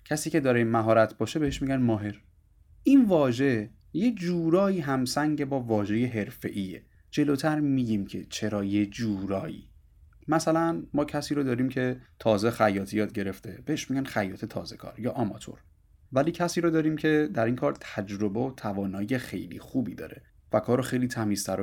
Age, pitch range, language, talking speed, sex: 30-49, 100-140 Hz, Persian, 155 wpm, male